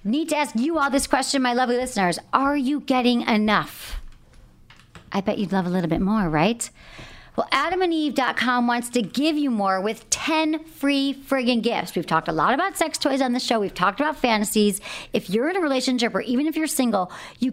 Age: 40-59